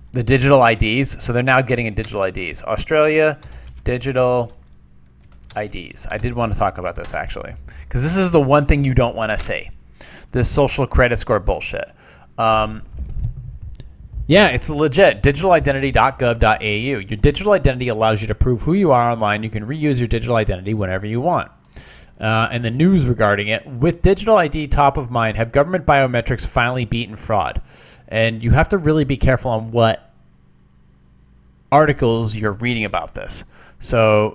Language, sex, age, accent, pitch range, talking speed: English, male, 30-49, American, 85-135 Hz, 165 wpm